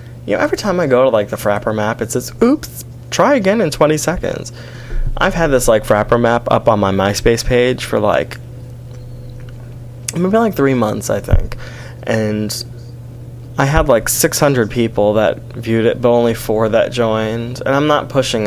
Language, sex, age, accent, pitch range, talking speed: English, male, 20-39, American, 105-125 Hz, 180 wpm